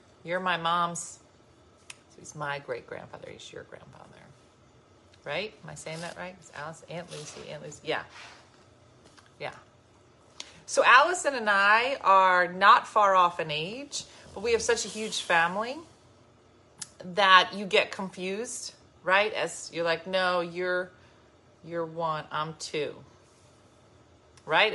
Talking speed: 140 wpm